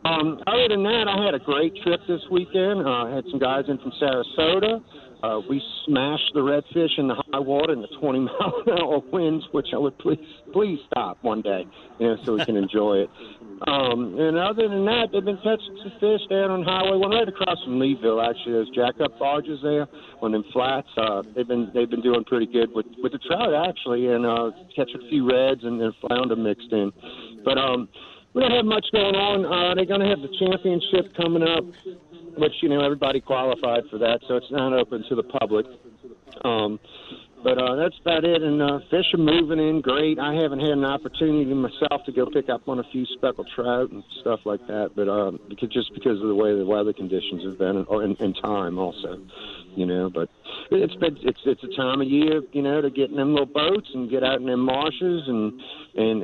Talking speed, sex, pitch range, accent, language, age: 225 wpm, male, 120-165 Hz, American, English, 50-69